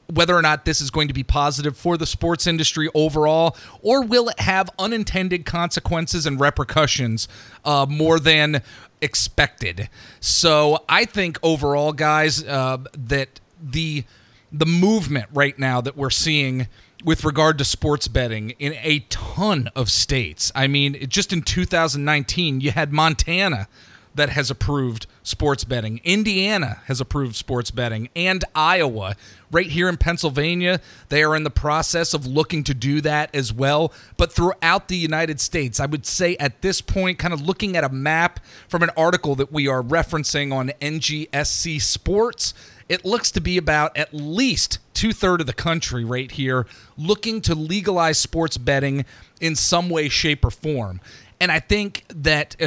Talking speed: 160 wpm